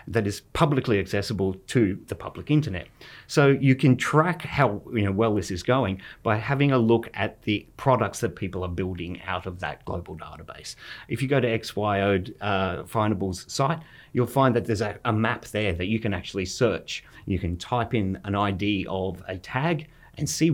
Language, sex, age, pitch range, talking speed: English, male, 30-49, 95-120 Hz, 195 wpm